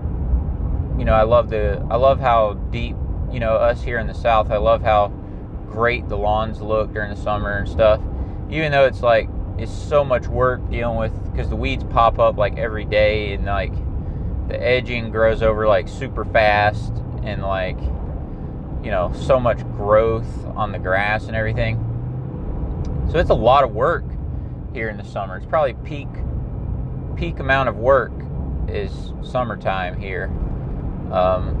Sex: male